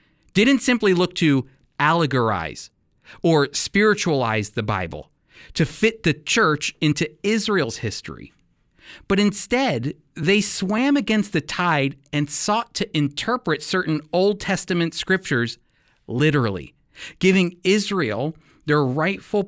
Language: English